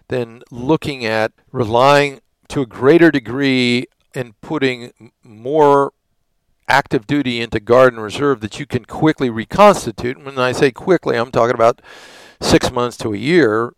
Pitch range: 115-155 Hz